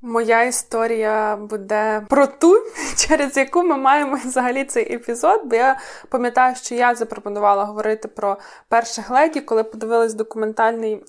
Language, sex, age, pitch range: Ukrainian, female, 20-39, 210-240 Hz